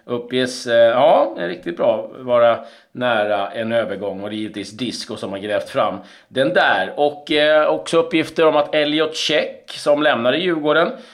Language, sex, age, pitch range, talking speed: Swedish, male, 40-59, 115-150 Hz, 165 wpm